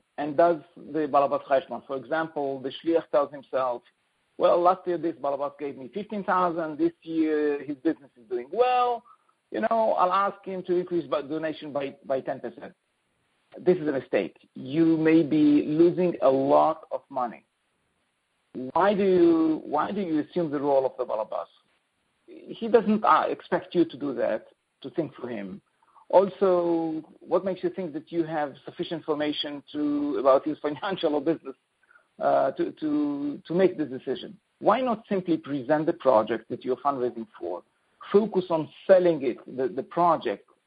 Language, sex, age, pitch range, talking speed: English, male, 50-69, 145-195 Hz, 160 wpm